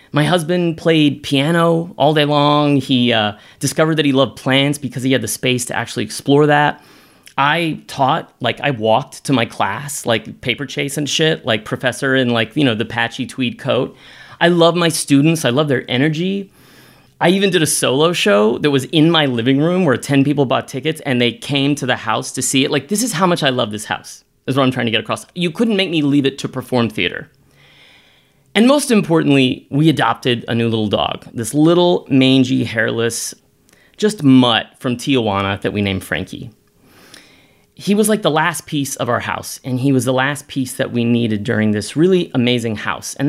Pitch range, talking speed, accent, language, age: 115-150 Hz, 210 wpm, American, English, 30-49